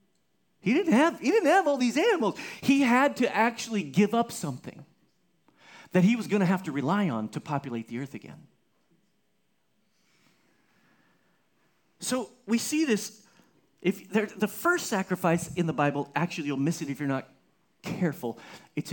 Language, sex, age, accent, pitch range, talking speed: English, male, 40-59, American, 150-210 Hz, 160 wpm